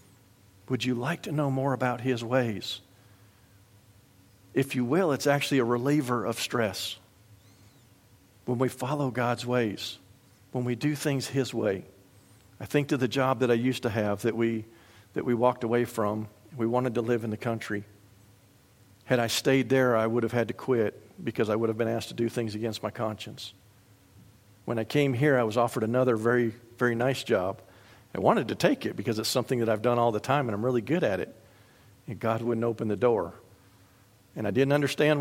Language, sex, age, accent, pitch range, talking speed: English, male, 50-69, American, 105-125 Hz, 200 wpm